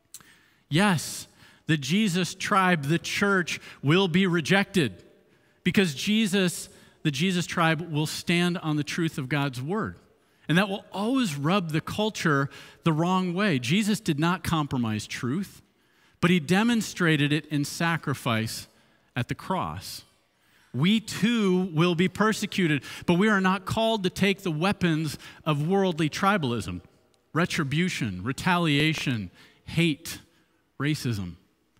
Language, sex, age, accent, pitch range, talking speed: English, male, 50-69, American, 135-185 Hz, 125 wpm